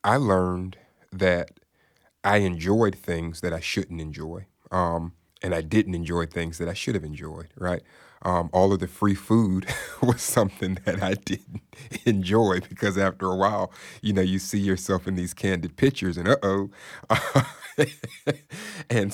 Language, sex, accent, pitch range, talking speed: English, male, American, 90-100 Hz, 160 wpm